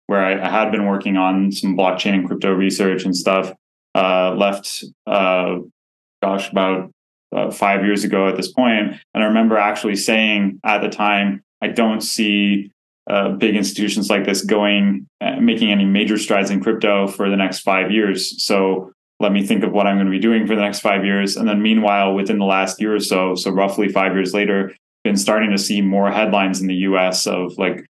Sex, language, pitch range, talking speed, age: male, English, 95-105 Hz, 205 wpm, 20-39